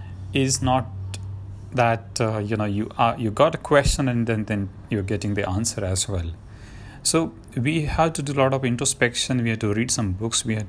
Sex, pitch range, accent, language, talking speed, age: male, 105-140 Hz, Indian, English, 215 wpm, 30-49